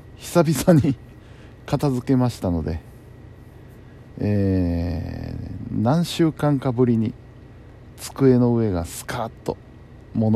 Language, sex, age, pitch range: Japanese, male, 50-69, 105-125 Hz